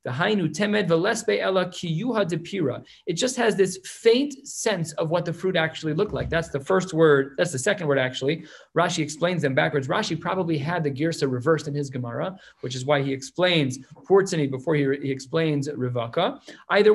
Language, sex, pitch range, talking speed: English, male, 140-180 Hz, 170 wpm